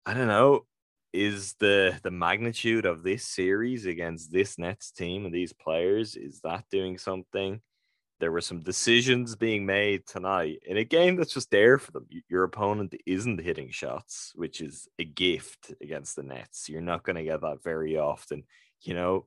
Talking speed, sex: 180 wpm, male